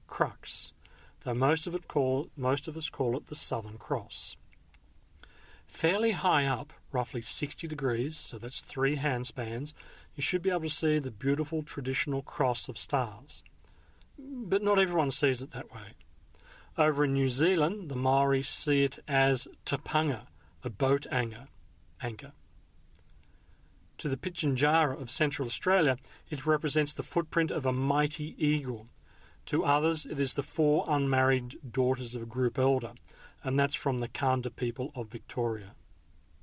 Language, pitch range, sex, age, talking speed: English, 115-150 Hz, male, 40-59, 150 wpm